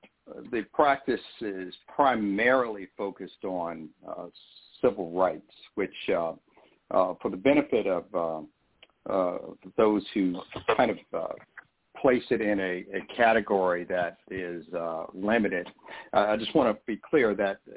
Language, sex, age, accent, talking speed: English, male, 60-79, American, 140 wpm